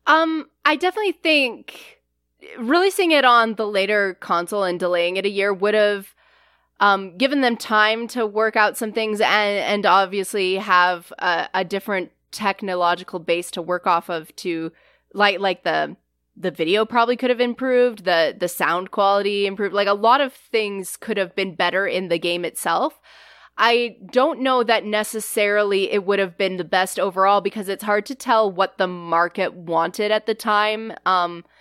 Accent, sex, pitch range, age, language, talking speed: American, female, 180-215 Hz, 20-39, English, 175 wpm